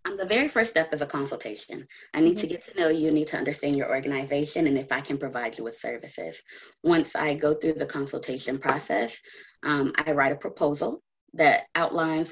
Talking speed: 205 wpm